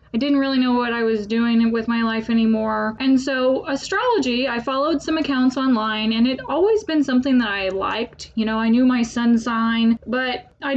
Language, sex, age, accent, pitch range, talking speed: English, female, 10-29, American, 235-275 Hz, 205 wpm